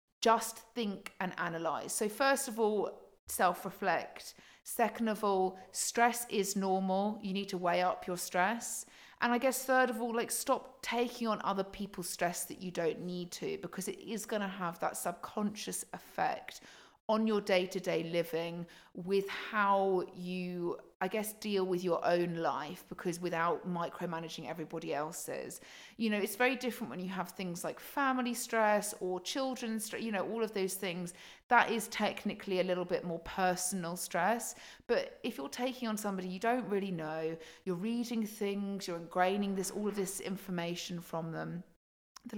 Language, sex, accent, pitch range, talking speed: English, female, British, 175-220 Hz, 175 wpm